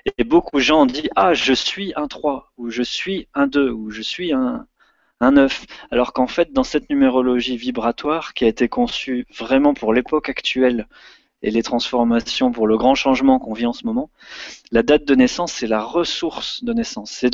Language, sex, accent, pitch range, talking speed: French, male, French, 120-155 Hz, 200 wpm